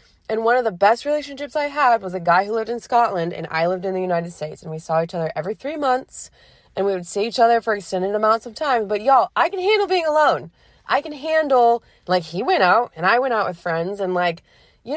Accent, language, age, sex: American, English, 20-39, female